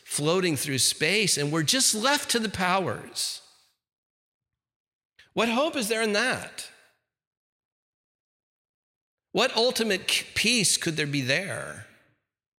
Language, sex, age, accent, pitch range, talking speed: English, male, 50-69, American, 140-205 Hz, 110 wpm